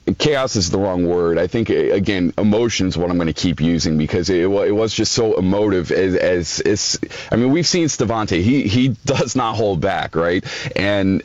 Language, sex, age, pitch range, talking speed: English, male, 40-59, 90-115 Hz, 205 wpm